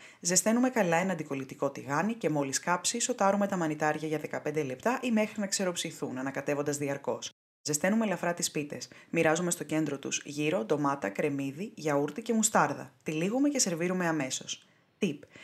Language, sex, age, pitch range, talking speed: Greek, female, 20-39, 145-175 Hz, 150 wpm